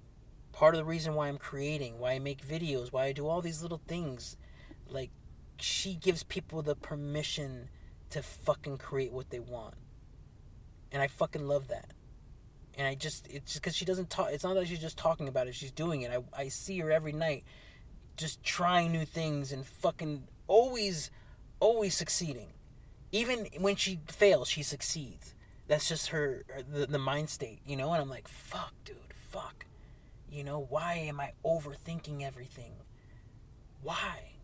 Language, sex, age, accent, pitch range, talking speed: English, male, 30-49, American, 130-165 Hz, 175 wpm